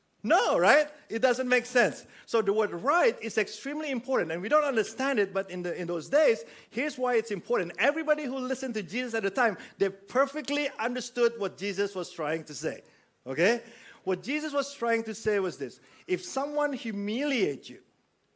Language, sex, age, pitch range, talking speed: English, male, 50-69, 185-260 Hz, 190 wpm